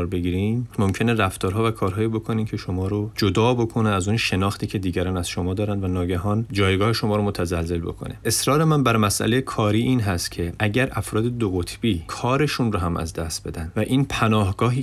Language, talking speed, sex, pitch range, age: Persian, 190 wpm, male, 90-110 Hz, 30-49